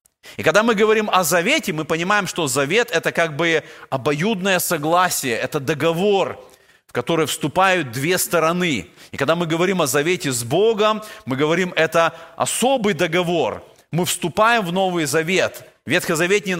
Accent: native